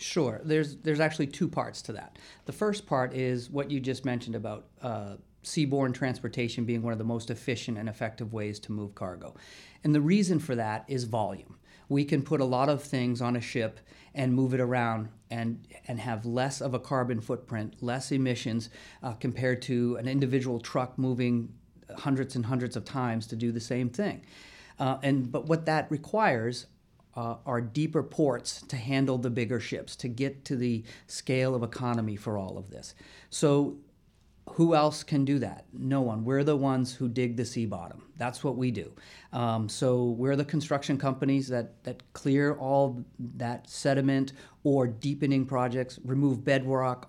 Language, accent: English, American